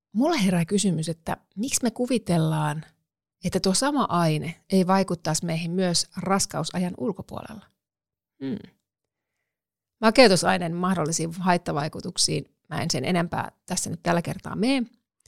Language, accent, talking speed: Finnish, native, 115 wpm